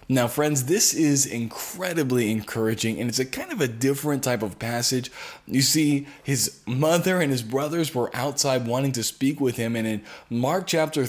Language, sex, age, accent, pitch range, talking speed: English, male, 20-39, American, 115-150 Hz, 185 wpm